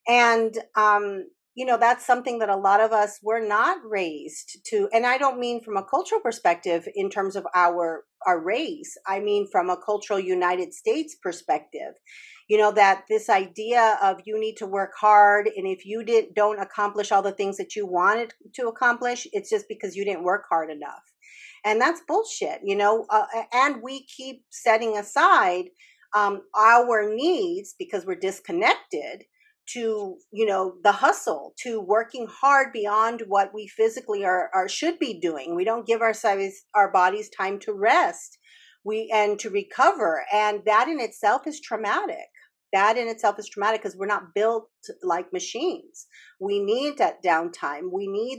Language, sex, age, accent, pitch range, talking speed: English, female, 40-59, American, 200-300 Hz, 175 wpm